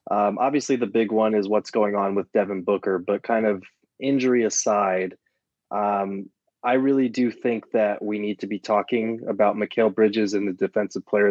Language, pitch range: English, 105-120 Hz